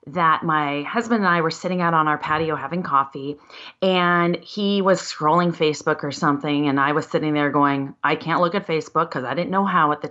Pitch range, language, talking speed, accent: 165-215 Hz, English, 225 wpm, American